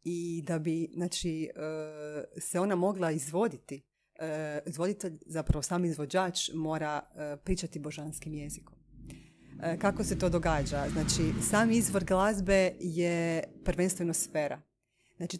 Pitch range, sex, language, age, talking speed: 160-185 Hz, female, Croatian, 30-49, 105 wpm